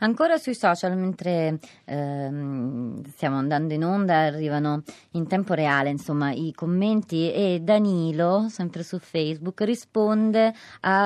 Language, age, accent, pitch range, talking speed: Italian, 30-49, native, 155-190 Hz, 125 wpm